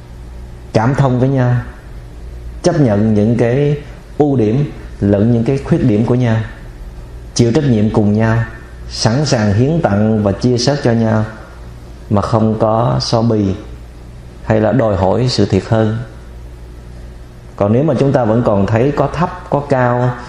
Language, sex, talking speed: Vietnamese, male, 165 wpm